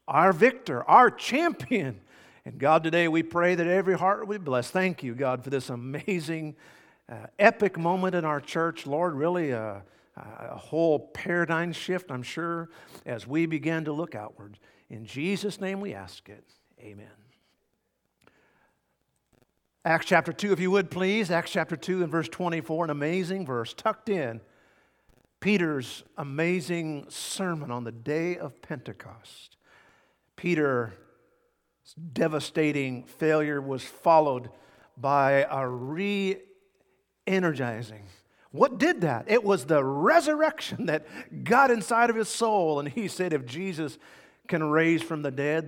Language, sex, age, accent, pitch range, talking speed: English, male, 50-69, American, 140-190 Hz, 140 wpm